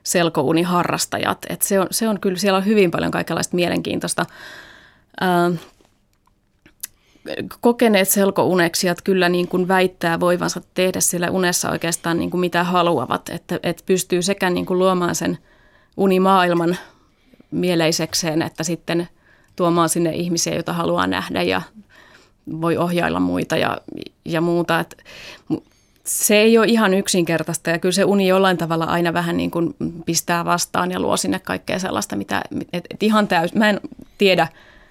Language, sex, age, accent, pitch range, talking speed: Finnish, female, 30-49, native, 165-185 Hz, 150 wpm